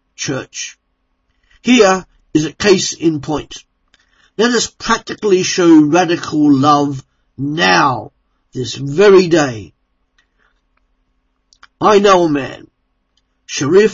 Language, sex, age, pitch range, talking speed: English, male, 50-69, 125-185 Hz, 95 wpm